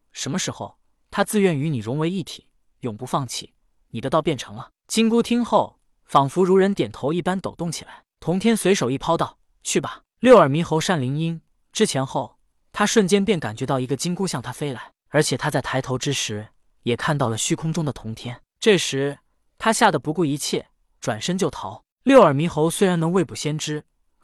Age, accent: 20-39, native